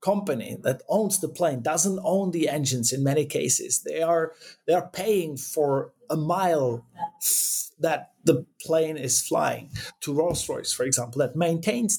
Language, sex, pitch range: English, male, 135-185 Hz